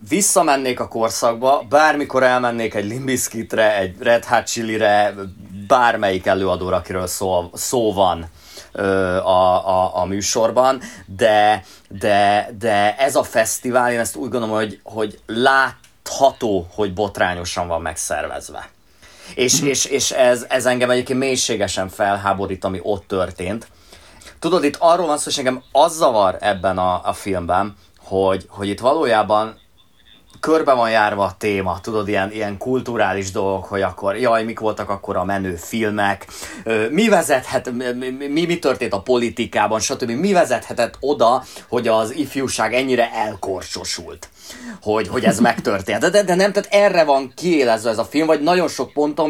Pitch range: 95-125 Hz